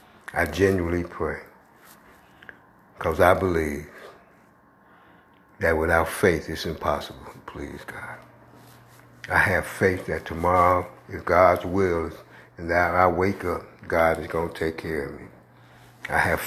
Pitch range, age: 80-95 Hz, 60-79